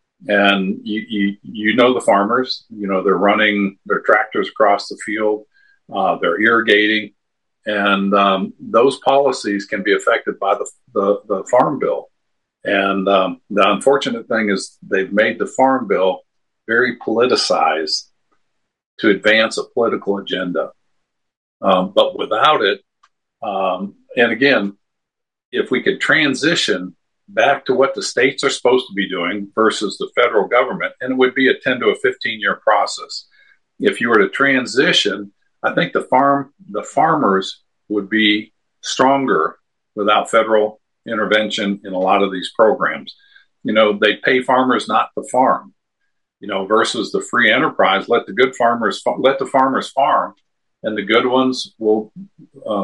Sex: male